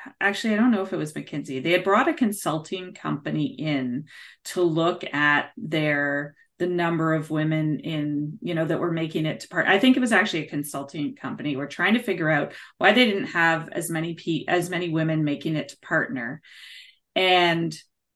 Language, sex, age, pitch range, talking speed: English, female, 30-49, 155-200 Hz, 200 wpm